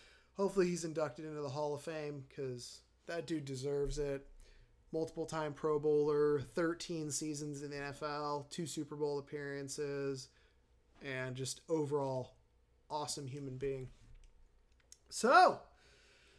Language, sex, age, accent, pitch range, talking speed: English, male, 30-49, American, 145-190 Hz, 120 wpm